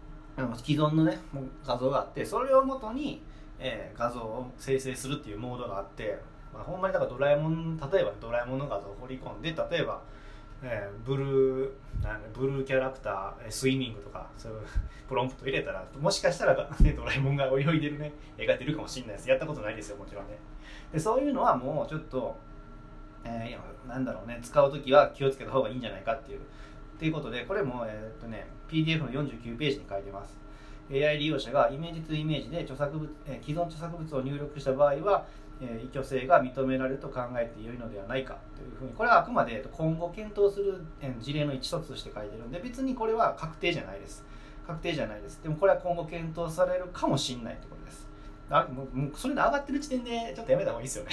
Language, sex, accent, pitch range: Japanese, male, native, 120-160 Hz